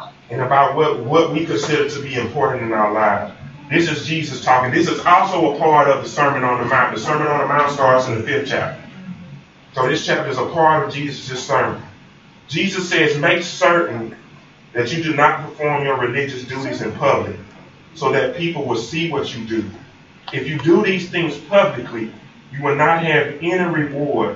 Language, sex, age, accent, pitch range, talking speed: English, male, 30-49, American, 130-170 Hz, 195 wpm